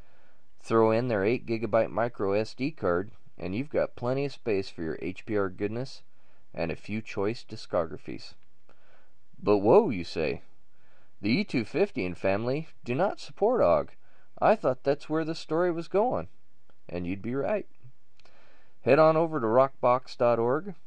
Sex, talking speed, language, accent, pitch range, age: male, 150 wpm, English, American, 100-130 Hz, 30-49